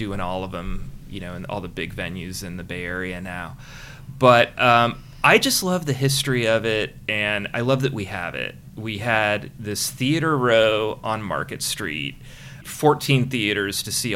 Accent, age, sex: American, 30-49, male